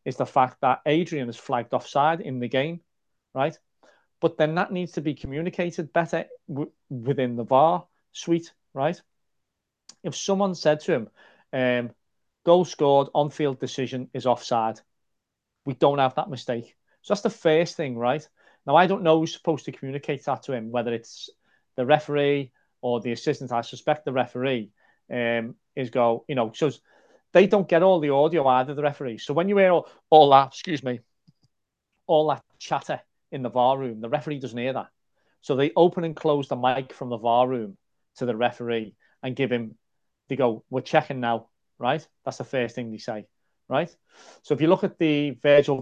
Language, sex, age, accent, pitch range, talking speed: English, male, 40-59, British, 120-155 Hz, 185 wpm